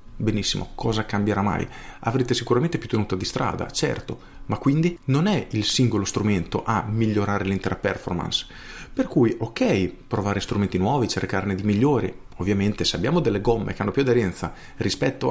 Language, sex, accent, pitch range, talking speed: Italian, male, native, 100-130 Hz, 160 wpm